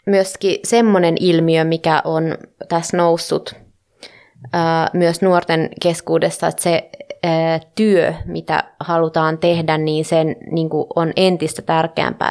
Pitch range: 160-185 Hz